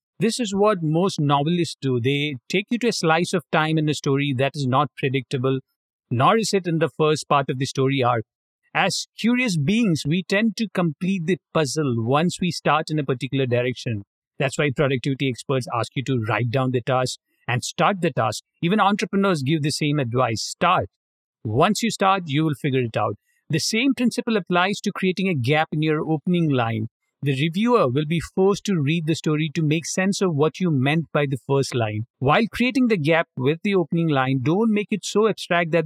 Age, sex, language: 50-69, male, English